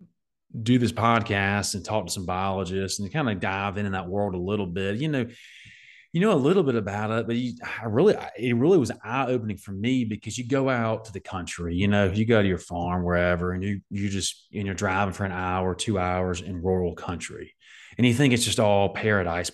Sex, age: male, 30-49